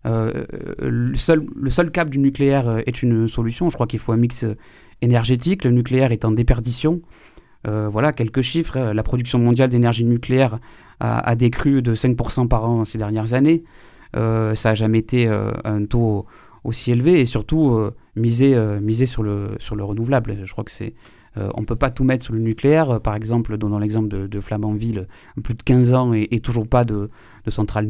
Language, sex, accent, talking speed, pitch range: French, male, French, 205 wpm, 115-135 Hz